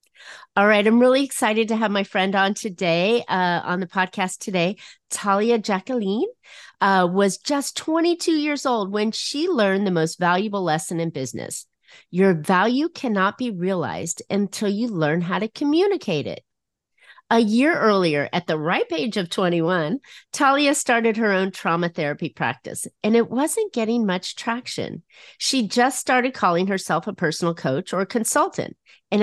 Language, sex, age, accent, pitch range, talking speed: English, female, 40-59, American, 170-235 Hz, 160 wpm